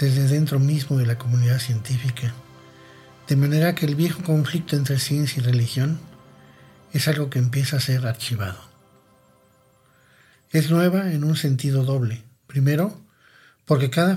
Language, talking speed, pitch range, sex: Spanish, 140 wpm, 125-150 Hz, male